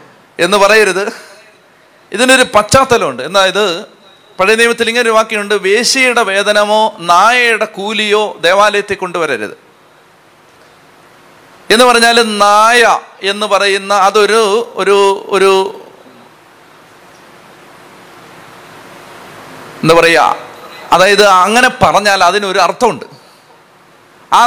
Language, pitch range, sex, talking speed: Malayalam, 195-235 Hz, male, 75 wpm